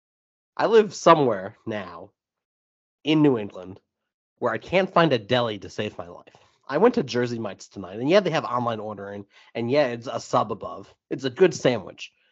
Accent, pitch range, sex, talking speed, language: American, 125-185 Hz, male, 190 wpm, English